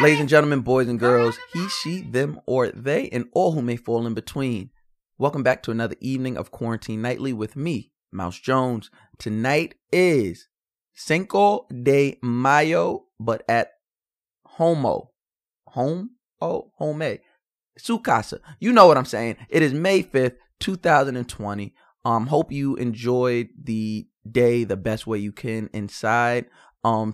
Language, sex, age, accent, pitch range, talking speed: English, male, 20-39, American, 110-140 Hz, 145 wpm